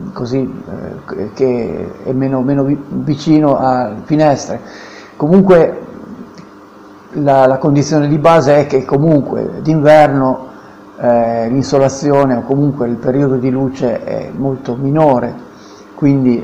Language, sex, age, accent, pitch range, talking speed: Italian, male, 50-69, native, 125-145 Hz, 115 wpm